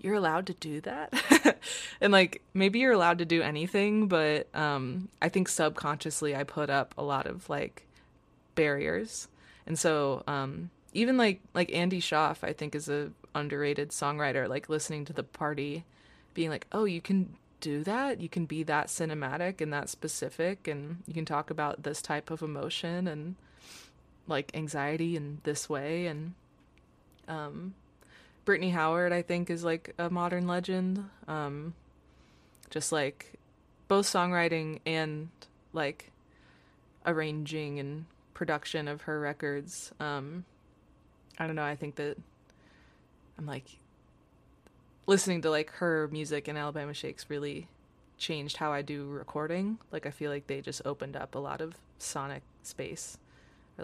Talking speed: 150 wpm